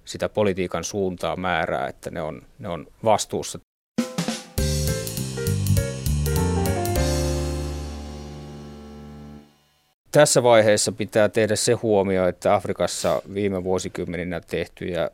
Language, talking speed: Finnish, 80 wpm